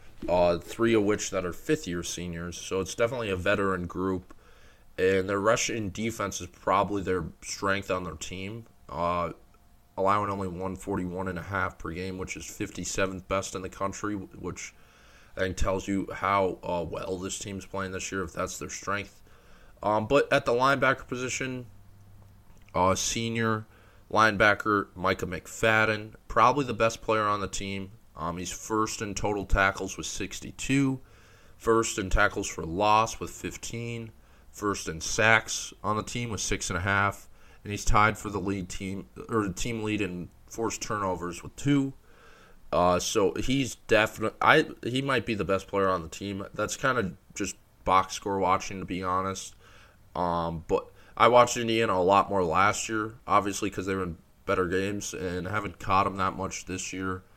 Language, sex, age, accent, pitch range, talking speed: English, male, 20-39, American, 95-110 Hz, 170 wpm